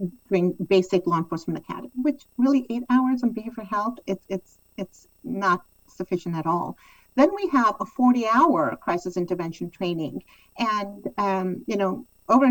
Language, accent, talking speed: English, American, 160 wpm